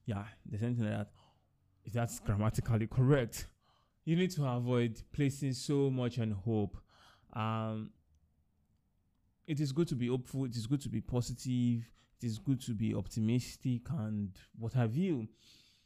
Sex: male